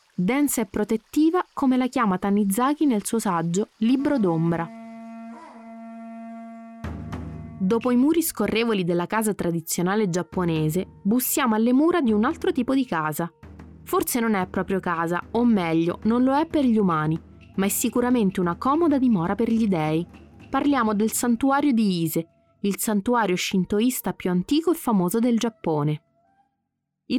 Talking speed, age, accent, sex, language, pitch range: 145 wpm, 20-39, native, female, Italian, 180-255 Hz